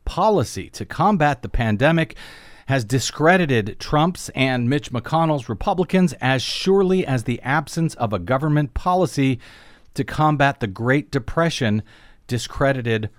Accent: American